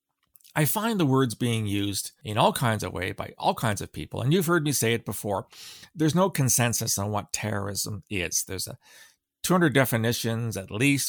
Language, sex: English, male